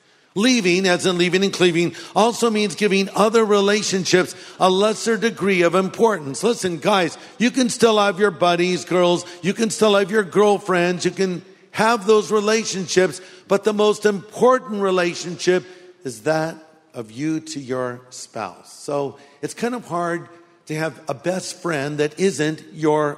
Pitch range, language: 145-195 Hz, English